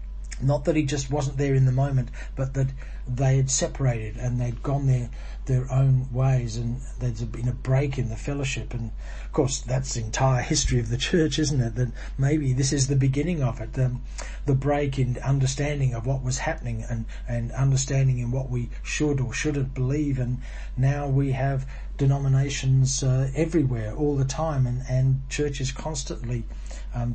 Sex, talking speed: male, 190 wpm